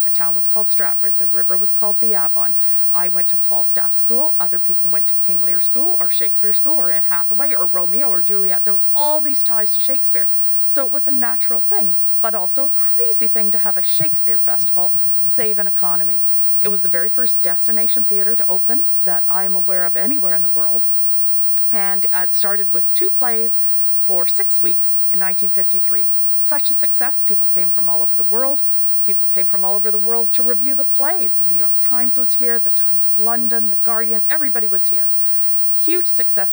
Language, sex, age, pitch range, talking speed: English, female, 40-59, 180-235 Hz, 205 wpm